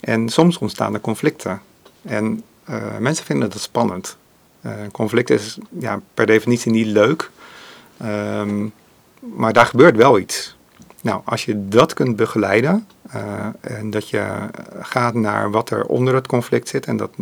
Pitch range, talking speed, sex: 110-125 Hz, 155 wpm, male